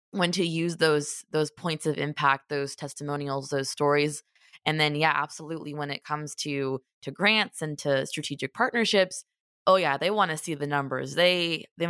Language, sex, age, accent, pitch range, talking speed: English, female, 20-39, American, 145-165 Hz, 180 wpm